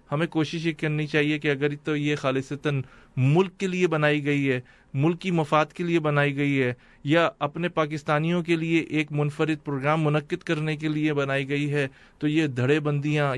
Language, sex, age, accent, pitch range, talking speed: English, male, 30-49, Indian, 145-160 Hz, 190 wpm